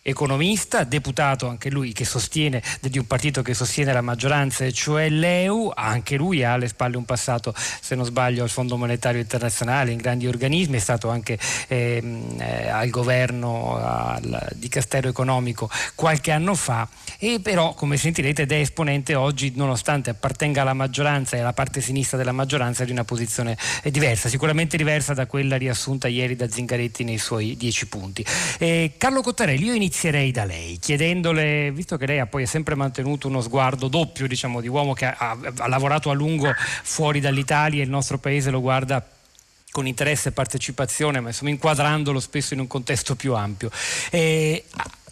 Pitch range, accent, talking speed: 125-145 Hz, native, 175 wpm